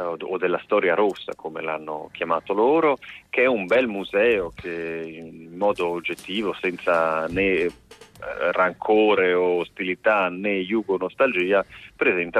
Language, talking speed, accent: Italian, 125 wpm, native